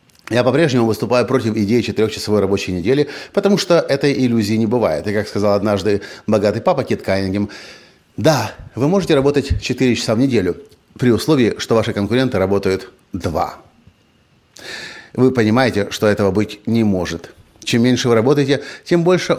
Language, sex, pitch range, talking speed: Russian, male, 100-130 Hz, 155 wpm